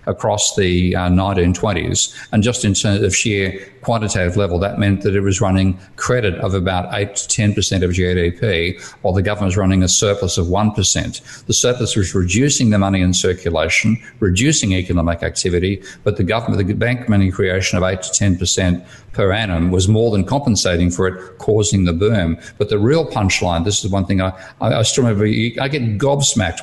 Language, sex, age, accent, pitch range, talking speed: English, male, 50-69, Australian, 90-105 Hz, 195 wpm